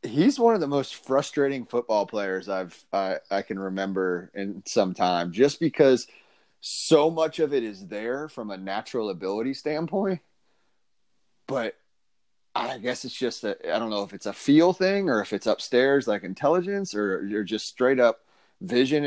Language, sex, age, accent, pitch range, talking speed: English, male, 30-49, American, 110-150 Hz, 175 wpm